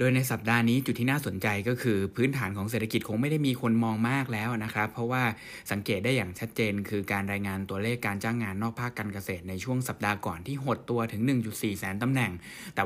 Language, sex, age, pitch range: Thai, male, 60-79, 105-125 Hz